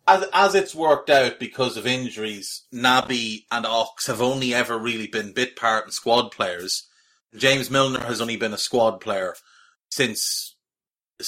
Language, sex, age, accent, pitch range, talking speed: English, male, 30-49, Irish, 115-145 Hz, 165 wpm